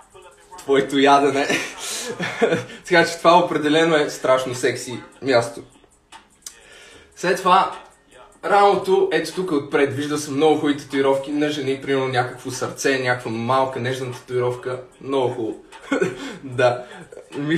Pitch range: 135-190 Hz